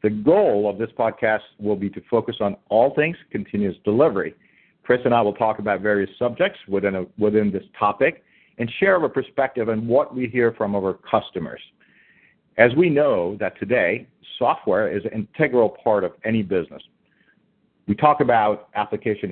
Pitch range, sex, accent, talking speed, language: 100-125 Hz, male, American, 170 wpm, English